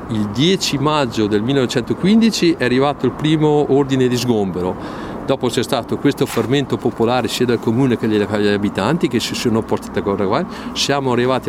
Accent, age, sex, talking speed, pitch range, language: native, 50-69, male, 165 wpm, 105-140 Hz, Italian